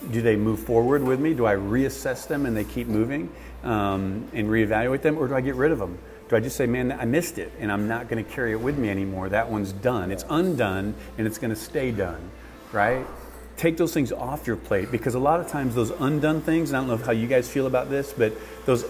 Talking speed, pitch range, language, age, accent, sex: 255 wpm, 105-130 Hz, English, 40-59, American, male